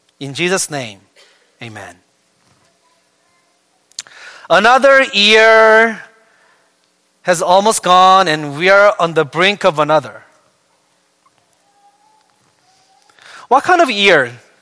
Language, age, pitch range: English, 30-49, 150-215 Hz